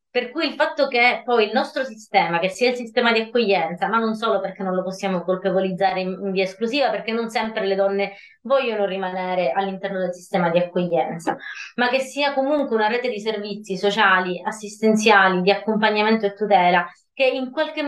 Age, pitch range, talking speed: 20-39, 195-240 Hz, 185 wpm